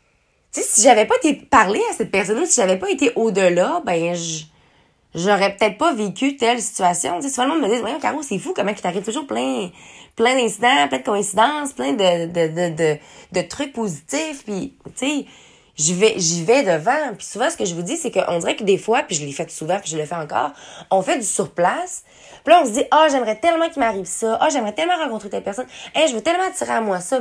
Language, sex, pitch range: French, female, 175-255 Hz